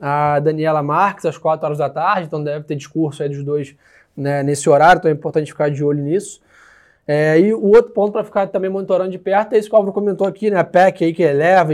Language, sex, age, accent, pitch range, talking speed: Portuguese, male, 20-39, Brazilian, 150-185 Hz, 250 wpm